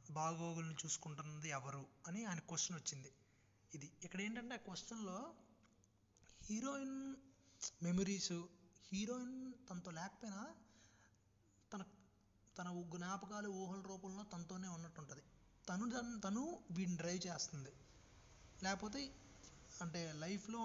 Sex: male